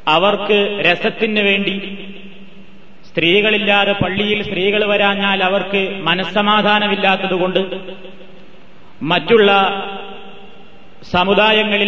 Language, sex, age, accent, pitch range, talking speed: Malayalam, male, 30-49, native, 190-205 Hz, 55 wpm